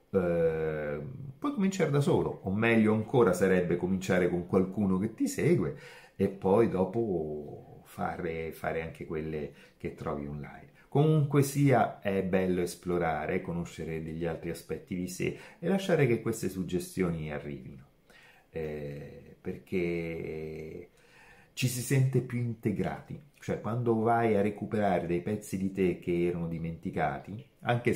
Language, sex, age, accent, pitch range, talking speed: Italian, male, 30-49, native, 85-115 Hz, 130 wpm